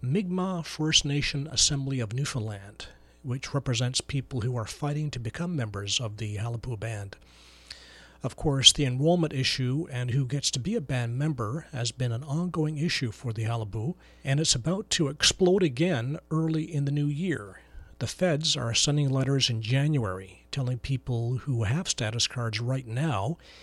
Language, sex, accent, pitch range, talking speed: English, male, American, 120-155 Hz, 170 wpm